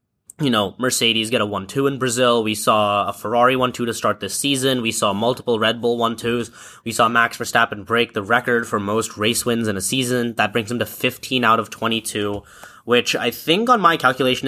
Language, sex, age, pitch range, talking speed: English, male, 10-29, 105-125 Hz, 210 wpm